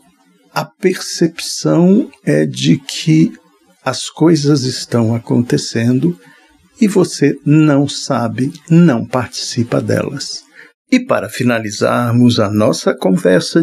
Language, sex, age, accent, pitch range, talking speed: Portuguese, male, 60-79, Brazilian, 120-160 Hz, 95 wpm